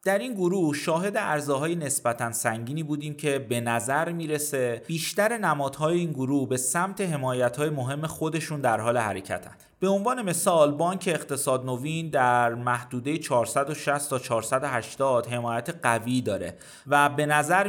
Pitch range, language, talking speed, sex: 125-170 Hz, Persian, 140 wpm, male